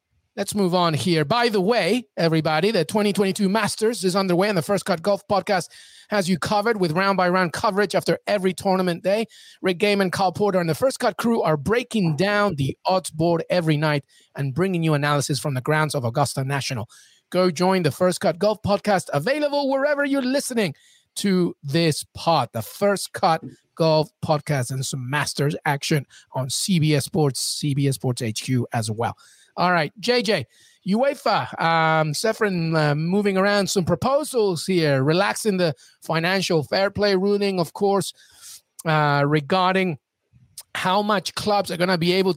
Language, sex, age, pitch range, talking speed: English, male, 30-49, 155-205 Hz, 165 wpm